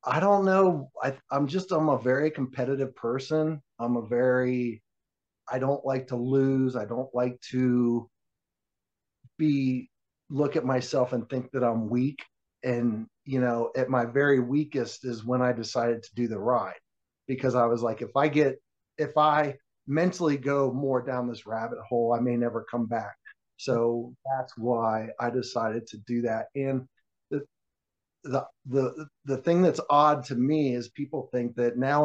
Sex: male